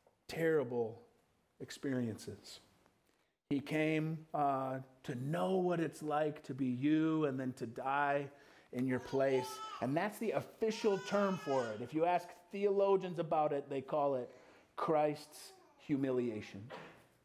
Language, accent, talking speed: English, American, 130 wpm